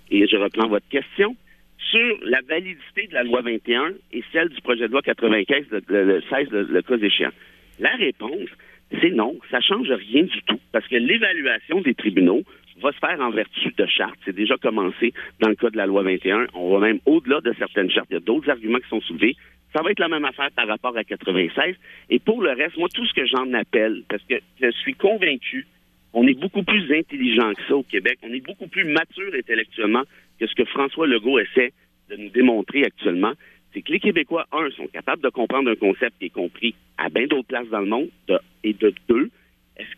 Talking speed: 225 wpm